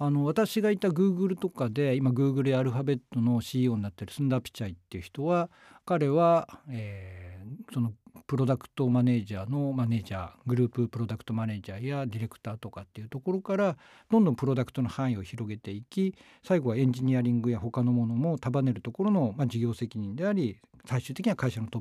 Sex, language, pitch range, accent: male, Japanese, 115-185 Hz, native